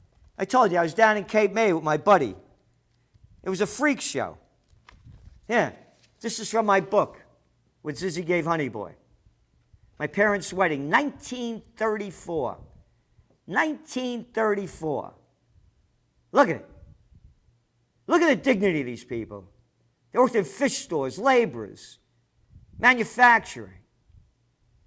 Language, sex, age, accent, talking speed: English, male, 50-69, American, 120 wpm